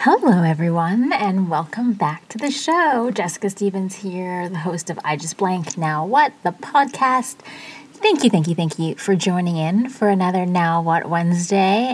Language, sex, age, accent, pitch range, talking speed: English, female, 20-39, American, 160-205 Hz, 175 wpm